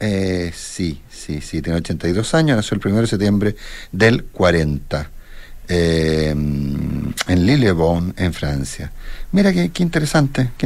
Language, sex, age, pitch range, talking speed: Spanish, male, 40-59, 80-105 Hz, 135 wpm